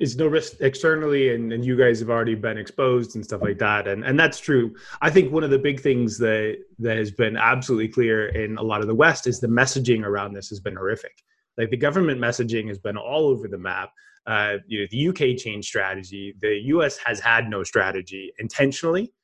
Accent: American